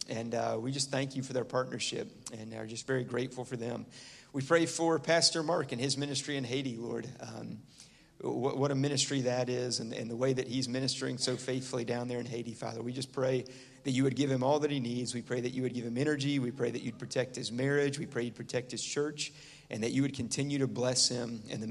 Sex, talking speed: male, 250 wpm